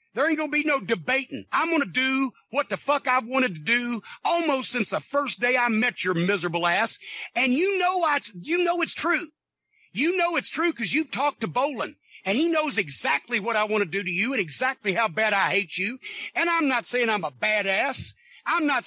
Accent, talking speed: American, 230 wpm